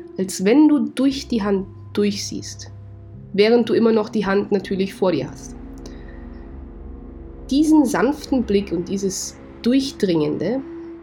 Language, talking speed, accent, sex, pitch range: German, 125 wpm, German, female, 175-235 Hz